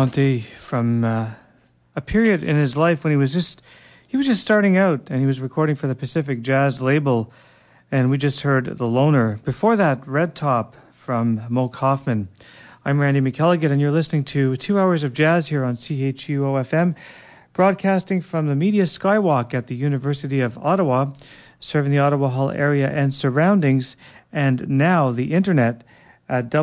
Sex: male